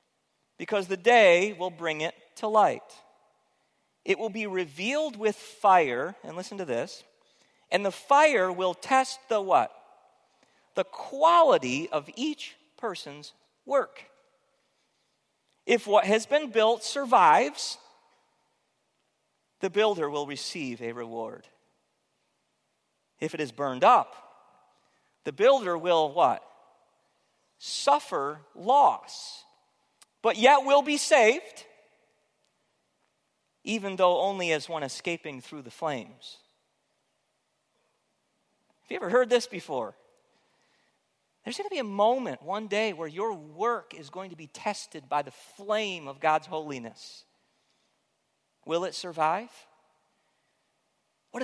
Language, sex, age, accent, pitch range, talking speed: English, male, 40-59, American, 165-265 Hz, 120 wpm